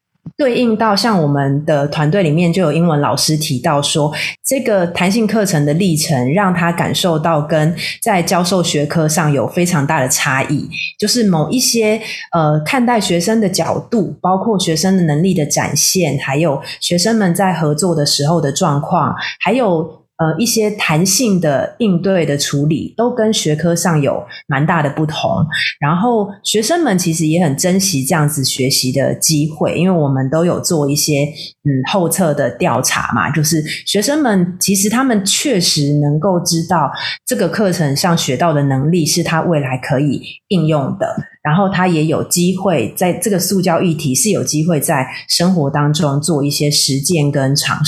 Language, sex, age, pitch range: Chinese, female, 30-49, 150-185 Hz